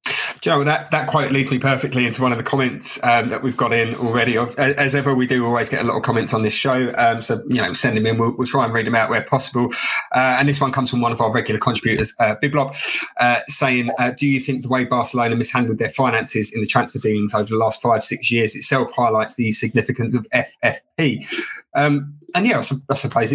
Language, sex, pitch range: English, male, 115-135 Hz